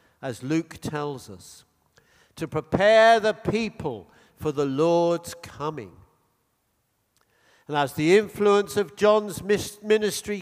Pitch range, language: 135-205 Hz, English